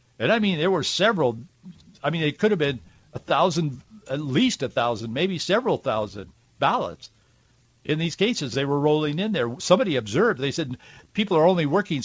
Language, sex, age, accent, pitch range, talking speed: English, male, 60-79, American, 120-160 Hz, 190 wpm